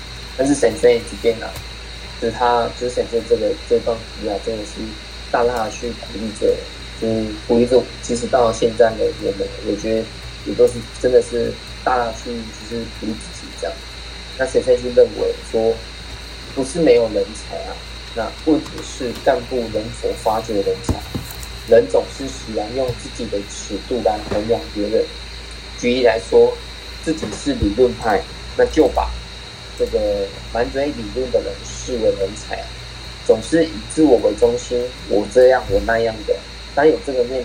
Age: 20-39